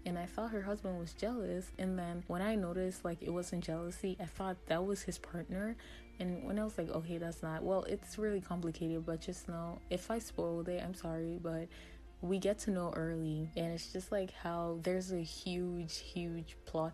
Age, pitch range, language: 20-39, 165-185 Hz, English